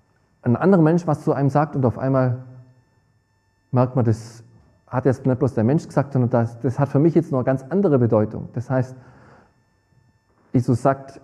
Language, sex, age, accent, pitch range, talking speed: German, male, 40-59, German, 110-140 Hz, 190 wpm